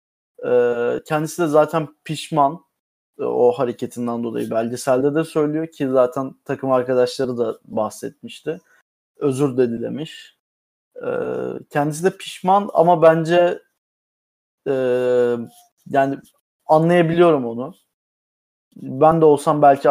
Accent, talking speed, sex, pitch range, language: native, 95 wpm, male, 130-160 Hz, Turkish